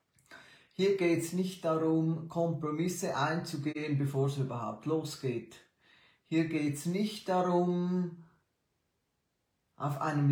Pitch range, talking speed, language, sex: 135-175 Hz, 105 wpm, German, male